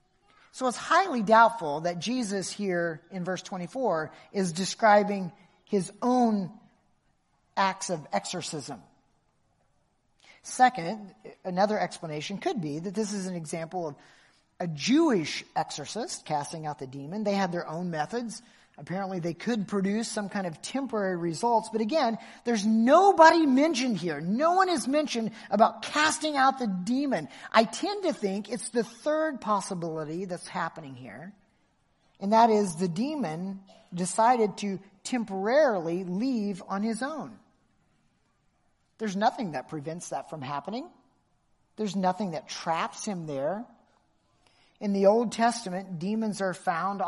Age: 40-59